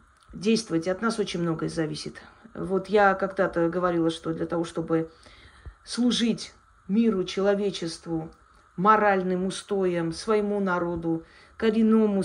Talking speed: 110 wpm